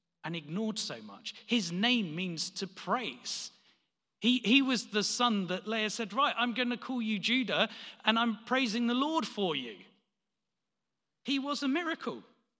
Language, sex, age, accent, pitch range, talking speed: English, male, 40-59, British, 165-230 Hz, 165 wpm